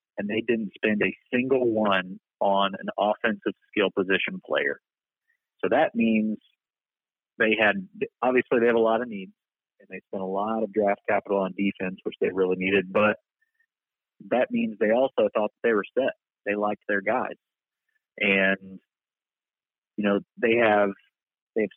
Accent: American